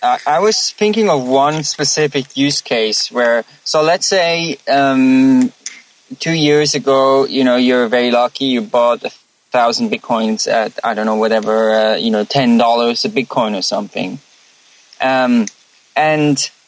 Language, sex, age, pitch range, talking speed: English, male, 20-39, 125-165 Hz, 150 wpm